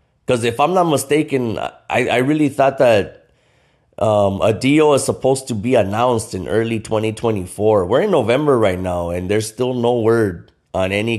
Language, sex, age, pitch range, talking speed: English, male, 30-49, 95-130 Hz, 170 wpm